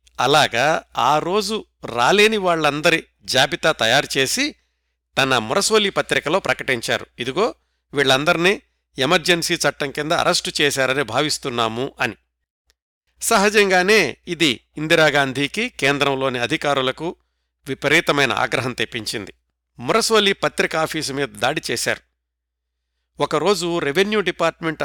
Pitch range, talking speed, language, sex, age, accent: 125-170 Hz, 85 wpm, Telugu, male, 60-79, native